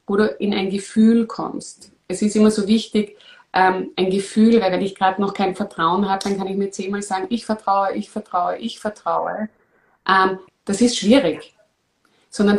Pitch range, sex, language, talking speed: 175-215 Hz, female, German, 185 wpm